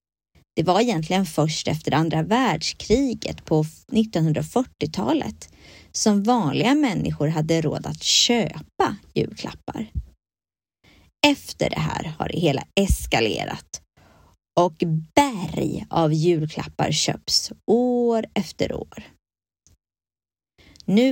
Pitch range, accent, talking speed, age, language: 155-220 Hz, native, 95 wpm, 20-39, Swedish